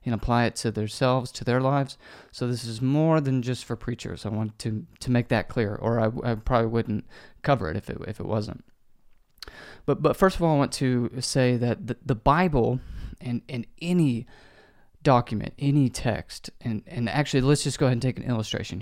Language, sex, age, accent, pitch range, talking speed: English, male, 30-49, American, 115-140 Hz, 205 wpm